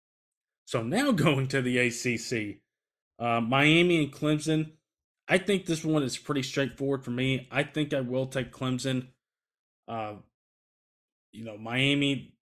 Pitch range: 120-145 Hz